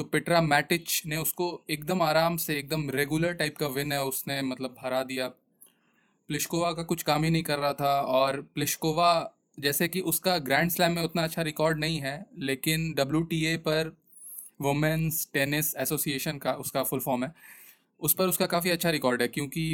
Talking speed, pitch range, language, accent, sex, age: 180 wpm, 135-160 Hz, Hindi, native, male, 20-39